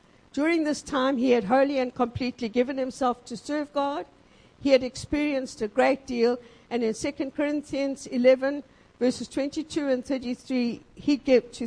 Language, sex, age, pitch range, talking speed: English, female, 50-69, 225-275 Hz, 145 wpm